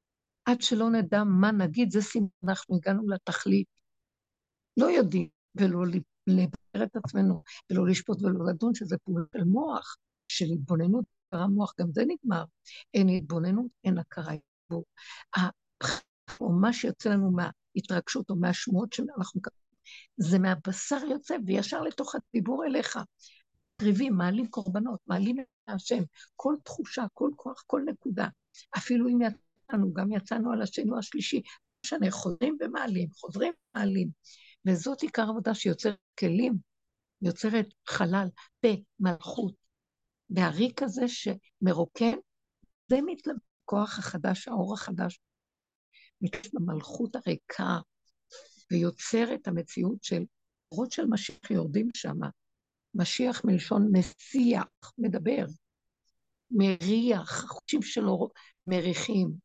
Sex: female